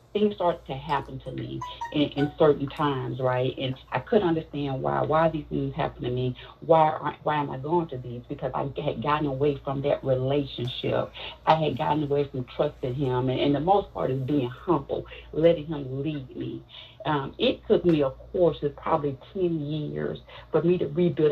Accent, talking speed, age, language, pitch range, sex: American, 195 wpm, 40-59, English, 130-160 Hz, female